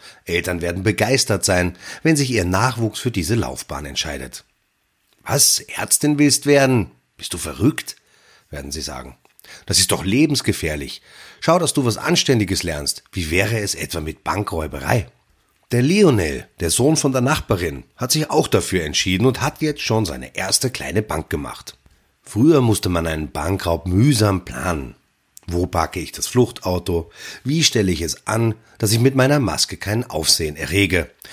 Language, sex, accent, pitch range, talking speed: German, male, German, 85-125 Hz, 160 wpm